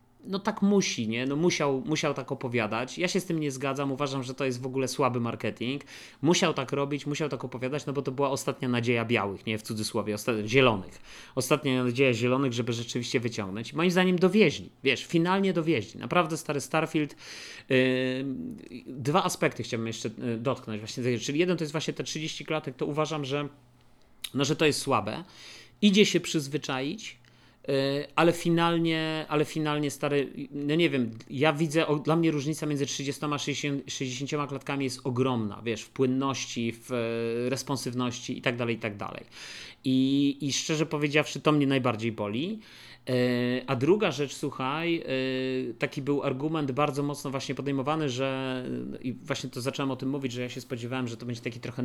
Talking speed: 170 wpm